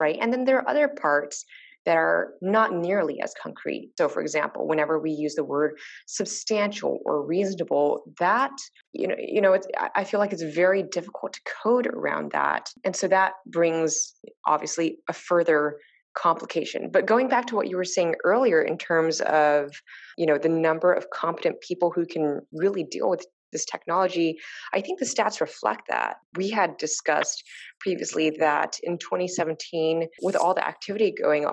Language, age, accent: English, 20-39, American